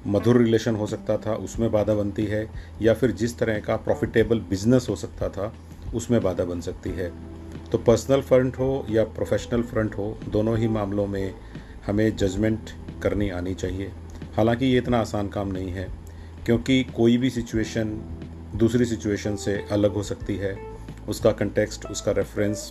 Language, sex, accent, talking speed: Hindi, male, native, 165 wpm